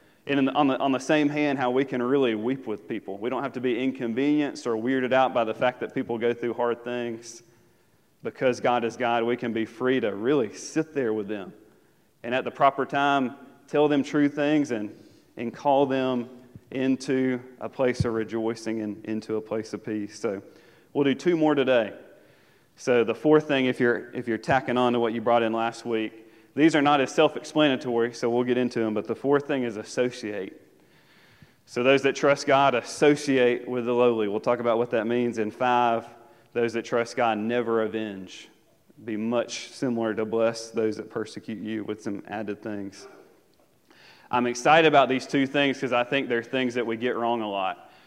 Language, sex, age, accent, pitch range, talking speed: English, male, 30-49, American, 115-140 Hz, 200 wpm